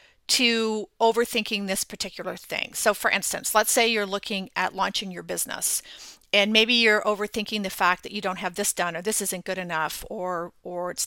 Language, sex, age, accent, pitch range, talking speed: English, female, 40-59, American, 195-235 Hz, 195 wpm